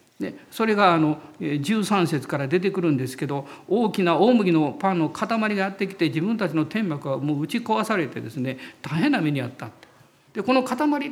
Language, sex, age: Japanese, male, 50-69